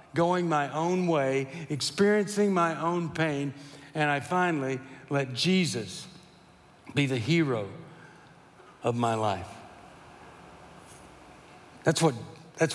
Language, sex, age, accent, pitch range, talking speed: English, male, 60-79, American, 145-200 Hz, 95 wpm